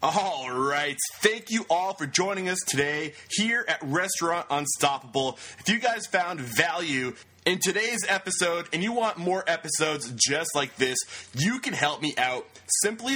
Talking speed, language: 155 wpm, English